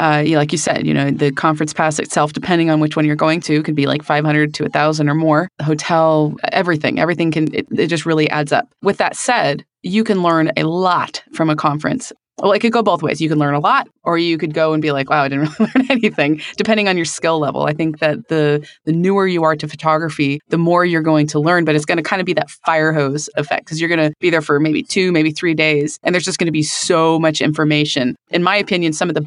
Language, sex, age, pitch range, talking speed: English, female, 20-39, 150-170 Hz, 265 wpm